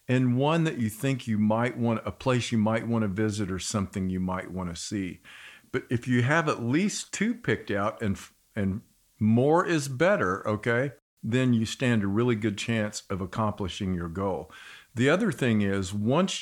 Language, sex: English, male